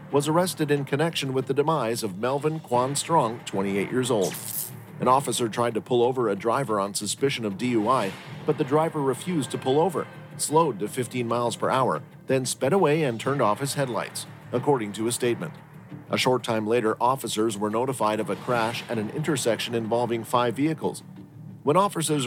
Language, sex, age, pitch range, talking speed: English, male, 40-59, 115-150 Hz, 185 wpm